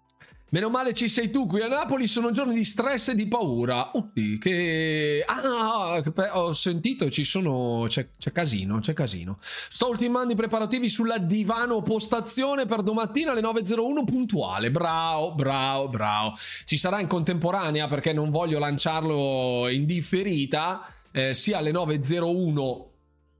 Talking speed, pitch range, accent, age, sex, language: 150 wpm, 140-215 Hz, native, 20-39, male, Italian